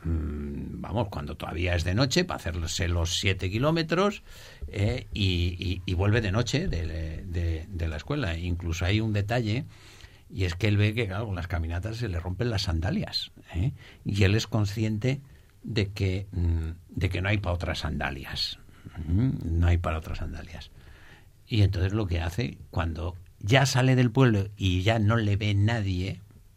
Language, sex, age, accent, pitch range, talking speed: Spanish, male, 60-79, Spanish, 85-110 Hz, 175 wpm